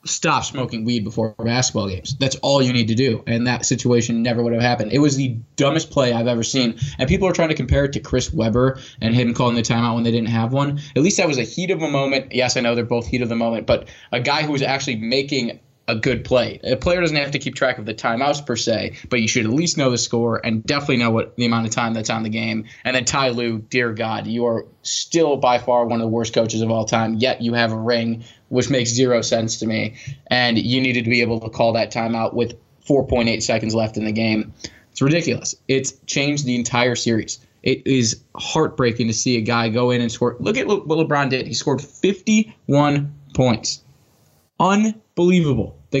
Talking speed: 240 wpm